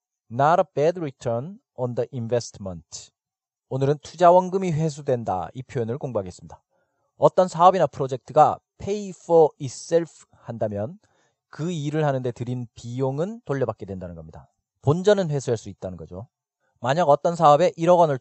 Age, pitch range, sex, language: 40-59, 120-165 Hz, male, Korean